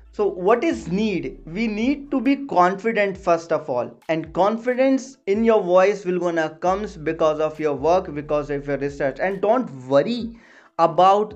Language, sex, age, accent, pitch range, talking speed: English, male, 20-39, Indian, 165-210 Hz, 175 wpm